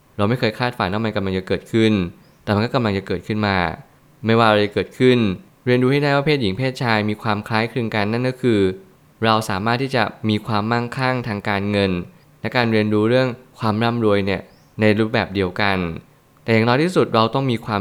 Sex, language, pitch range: male, Thai, 100-125 Hz